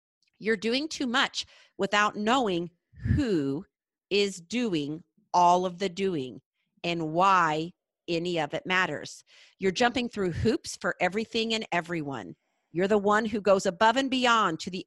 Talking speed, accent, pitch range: 150 wpm, American, 170-225 Hz